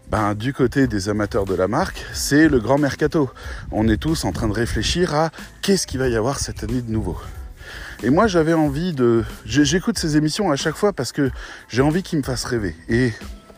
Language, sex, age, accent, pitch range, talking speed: French, male, 20-39, French, 110-150 Hz, 215 wpm